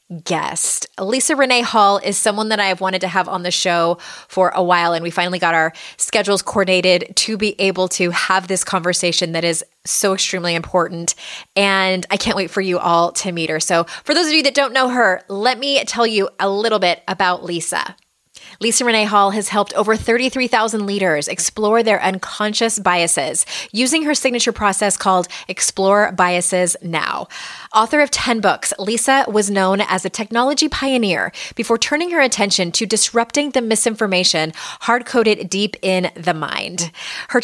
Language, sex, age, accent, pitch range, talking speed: English, female, 20-39, American, 180-230 Hz, 175 wpm